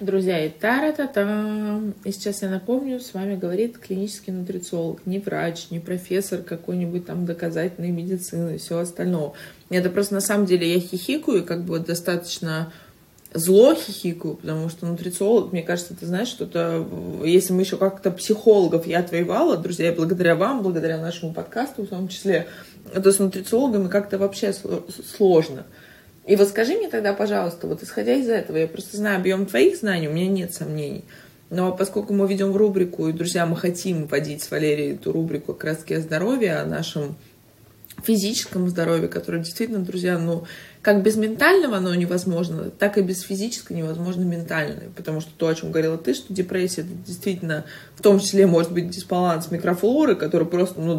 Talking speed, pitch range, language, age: 165 wpm, 170-200 Hz, Russian, 20-39